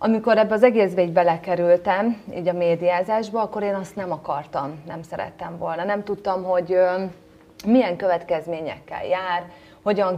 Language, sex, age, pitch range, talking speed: Hungarian, female, 30-49, 170-210 Hz, 140 wpm